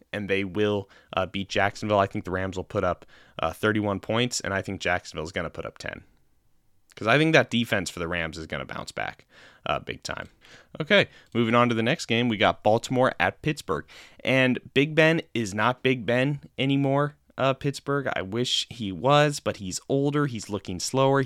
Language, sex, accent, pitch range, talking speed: English, male, American, 100-130 Hz, 210 wpm